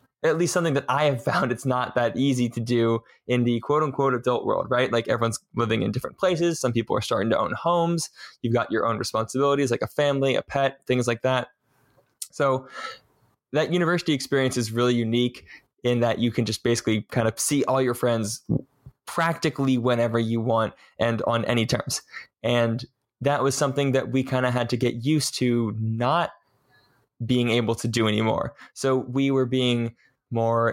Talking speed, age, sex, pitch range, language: 185 wpm, 20-39, male, 120-140 Hz, English